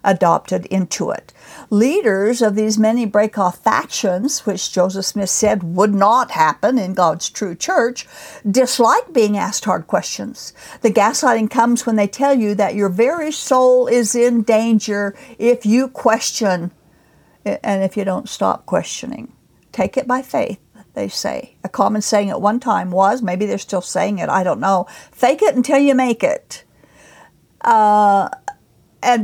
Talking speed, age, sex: 160 wpm, 60-79, female